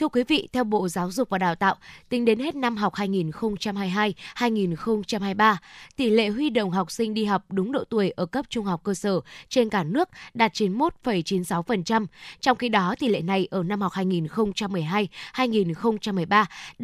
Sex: female